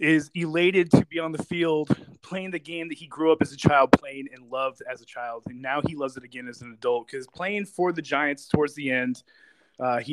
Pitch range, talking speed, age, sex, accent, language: 130-165 Hz, 250 wpm, 20-39, male, American, English